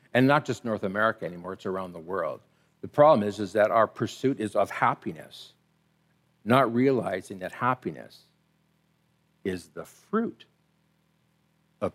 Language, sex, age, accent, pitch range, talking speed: English, male, 60-79, American, 120-170 Hz, 140 wpm